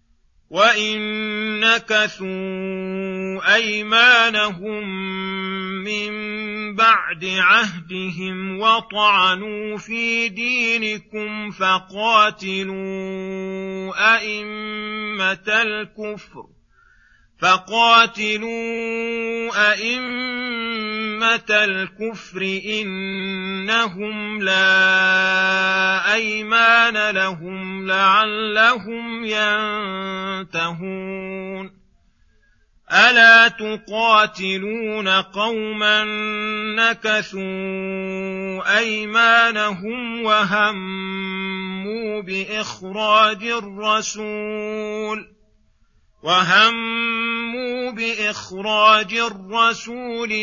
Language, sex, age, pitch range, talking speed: Arabic, male, 40-59, 190-220 Hz, 35 wpm